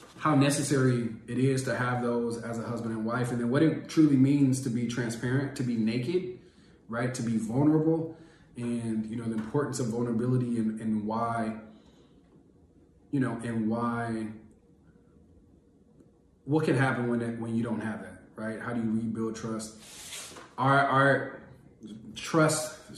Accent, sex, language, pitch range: American, male, English, 110-125 Hz